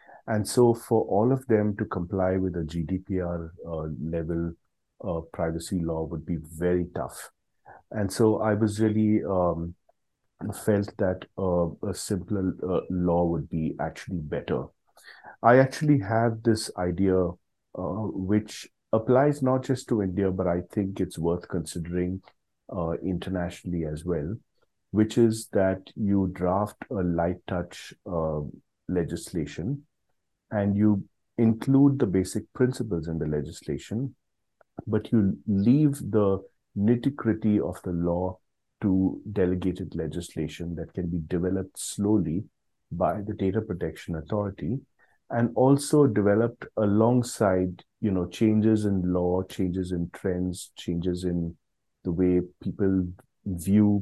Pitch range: 85-110 Hz